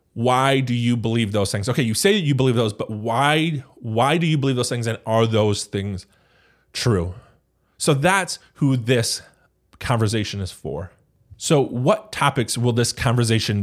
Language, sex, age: English, male, 20-39